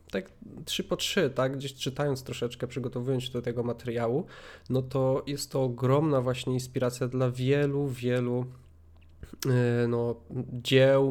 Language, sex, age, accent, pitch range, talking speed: Polish, male, 20-39, native, 115-135 Hz, 135 wpm